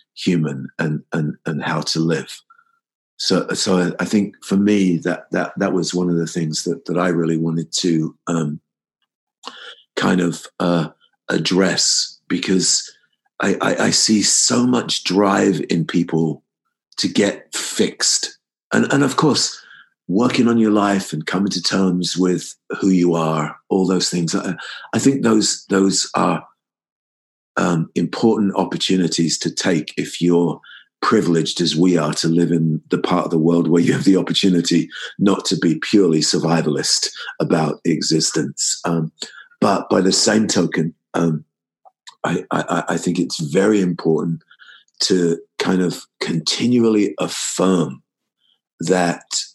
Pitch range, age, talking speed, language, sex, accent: 80-95 Hz, 50-69, 145 wpm, English, male, British